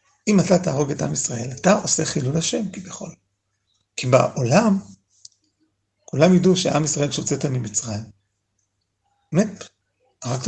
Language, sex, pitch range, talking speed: Hebrew, male, 110-170 Hz, 125 wpm